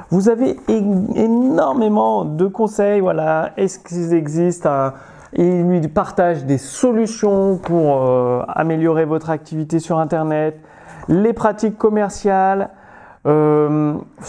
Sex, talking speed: male, 110 wpm